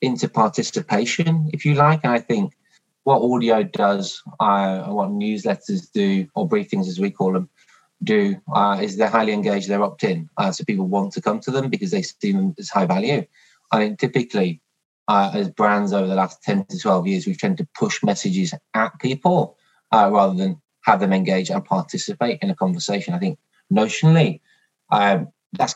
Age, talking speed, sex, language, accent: 20-39, 185 wpm, male, English, British